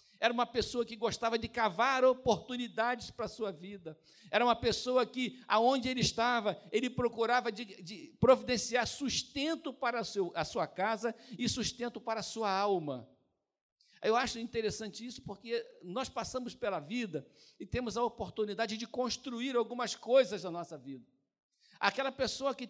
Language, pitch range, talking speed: Portuguese, 215-245 Hz, 150 wpm